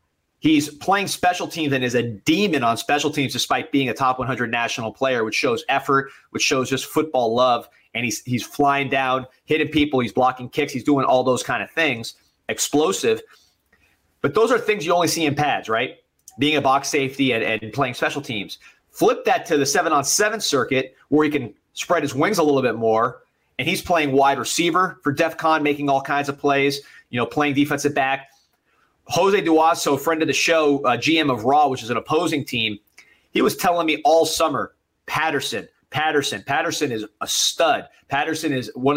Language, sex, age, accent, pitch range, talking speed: English, male, 30-49, American, 130-155 Hz, 195 wpm